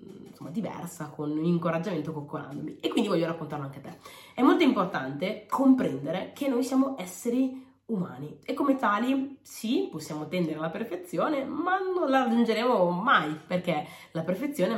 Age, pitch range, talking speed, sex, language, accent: 20-39, 155-230 Hz, 155 wpm, female, Italian, native